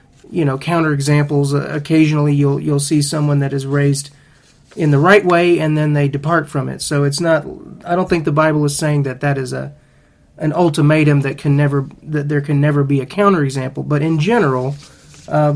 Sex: male